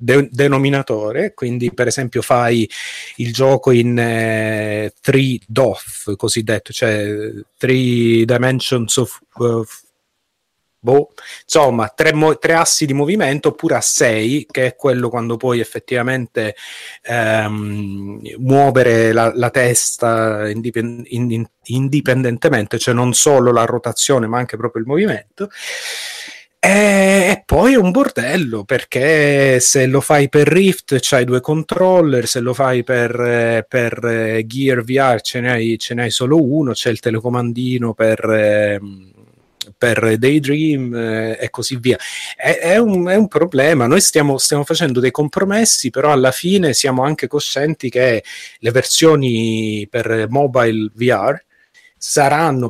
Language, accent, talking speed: Italian, native, 125 wpm